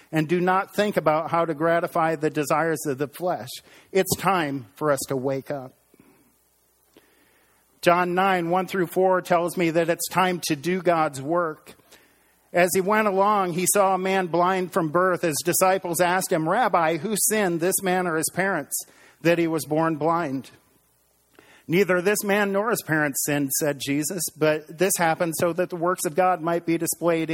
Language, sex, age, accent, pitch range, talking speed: English, male, 40-59, American, 150-180 Hz, 180 wpm